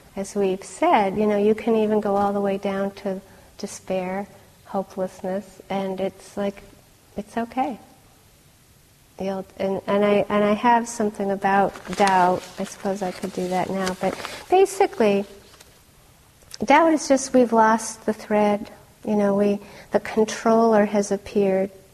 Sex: female